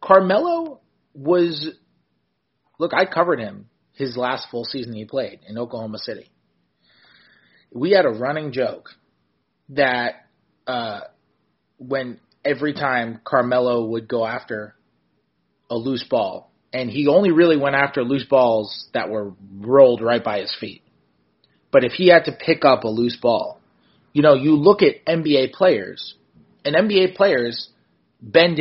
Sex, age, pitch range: male, 30-49, 115-150 Hz